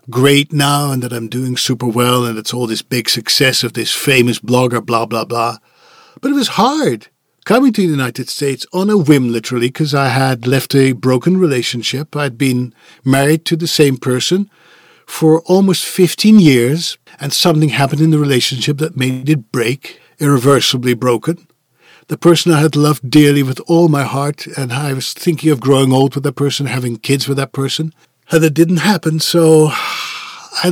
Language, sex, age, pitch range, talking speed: English, male, 50-69, 125-165 Hz, 185 wpm